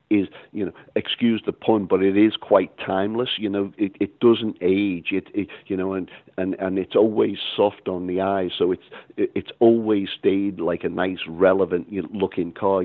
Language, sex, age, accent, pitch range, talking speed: English, male, 50-69, British, 90-100 Hz, 195 wpm